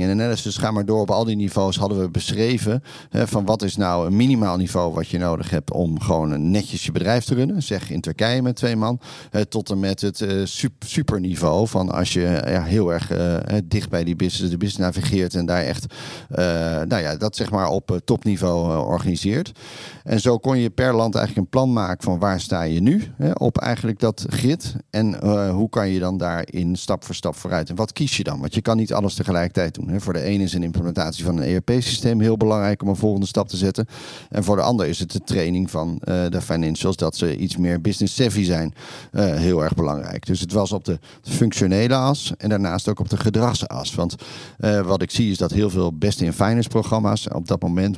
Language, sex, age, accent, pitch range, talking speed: Dutch, male, 40-59, Dutch, 90-110 Hz, 220 wpm